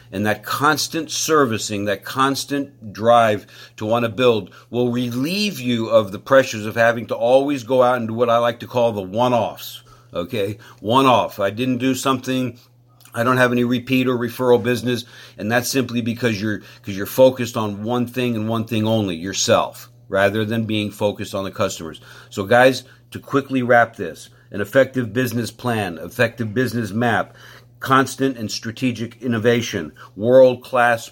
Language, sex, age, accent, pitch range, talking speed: English, male, 50-69, American, 110-130 Hz, 165 wpm